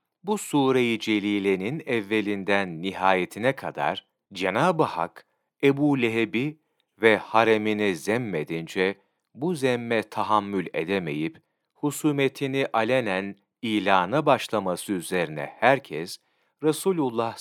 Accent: native